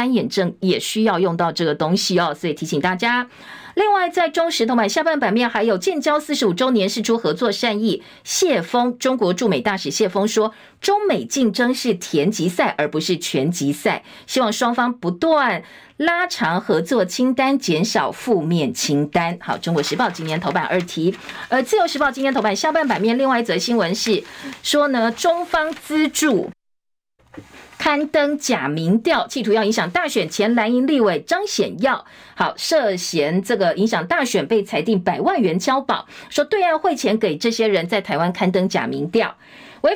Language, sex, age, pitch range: Chinese, female, 50-69, 185-265 Hz